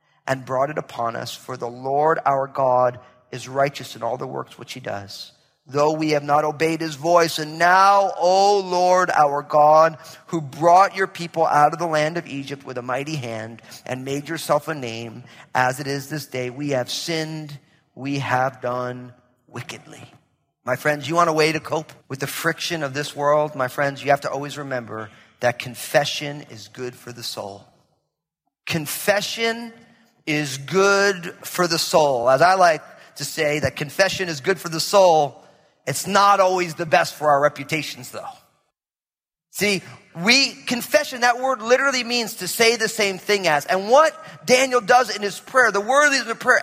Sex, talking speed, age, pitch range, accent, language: male, 185 wpm, 40-59, 140-220 Hz, American, English